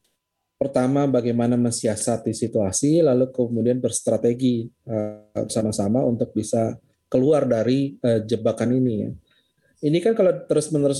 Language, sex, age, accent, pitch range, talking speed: Indonesian, male, 30-49, native, 120-145 Hz, 100 wpm